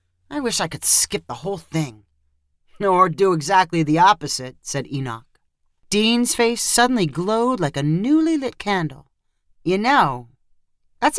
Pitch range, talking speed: 145-215 Hz, 145 wpm